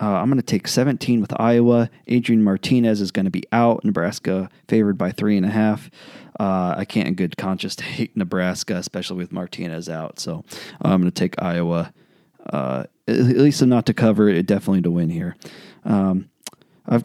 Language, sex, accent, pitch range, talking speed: English, male, American, 100-120 Hz, 185 wpm